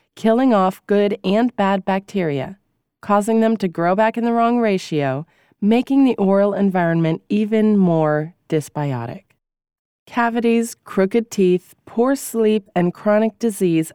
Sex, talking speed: female, 130 wpm